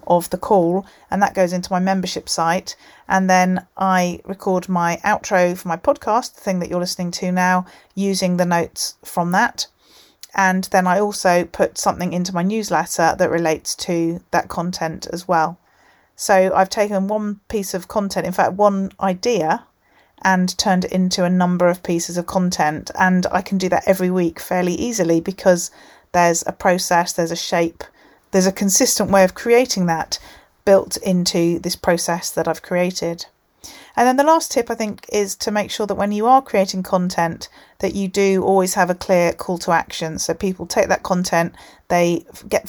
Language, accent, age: English, British, 40-59